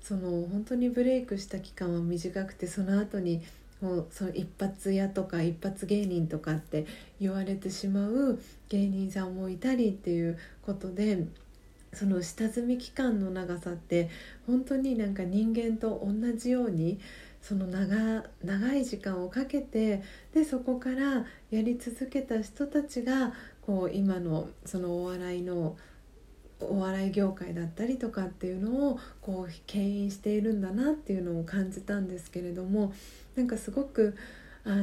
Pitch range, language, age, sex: 180-230 Hz, Japanese, 40-59, female